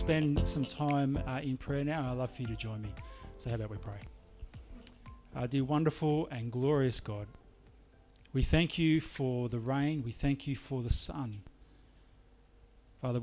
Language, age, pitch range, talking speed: English, 40-59, 110-140 Hz, 175 wpm